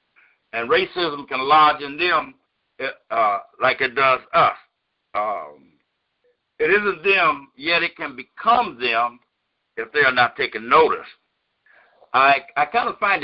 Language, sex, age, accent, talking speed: English, male, 60-79, American, 140 wpm